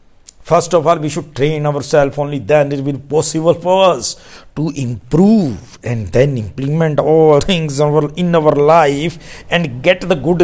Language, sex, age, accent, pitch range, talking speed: Hindi, male, 60-79, native, 95-155 Hz, 165 wpm